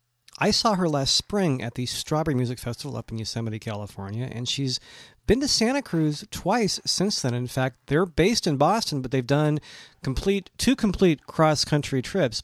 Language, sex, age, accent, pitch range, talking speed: English, male, 40-59, American, 120-160 Hz, 180 wpm